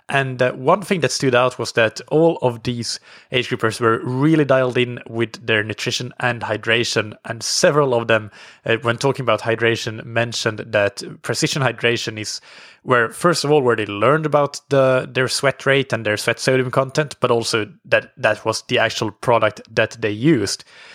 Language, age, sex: English, 20-39, male